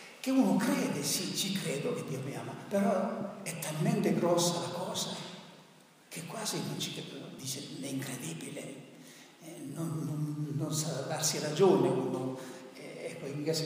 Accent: native